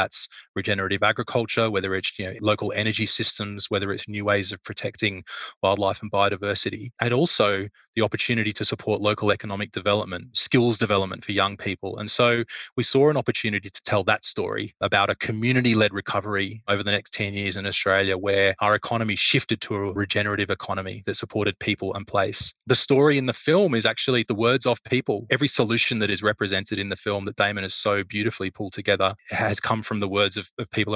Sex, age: male, 20-39